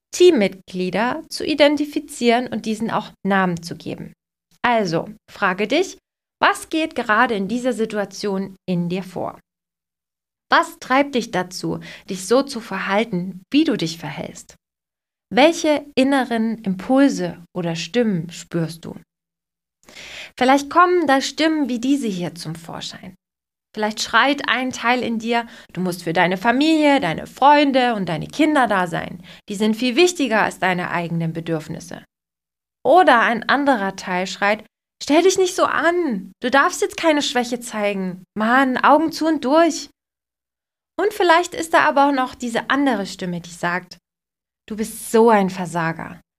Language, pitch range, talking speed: German, 185-285 Hz, 145 wpm